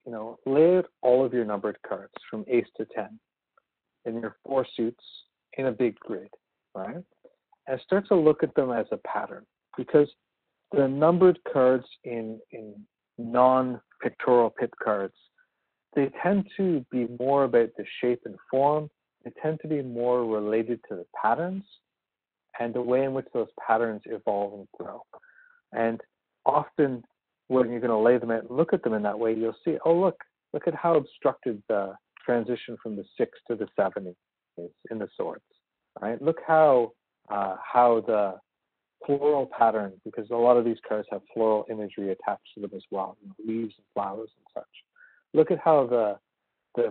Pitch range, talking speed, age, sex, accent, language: 110-140 Hz, 180 wpm, 50-69, male, American, English